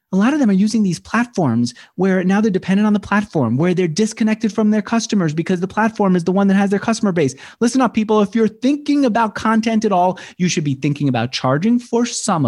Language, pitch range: English, 135-205 Hz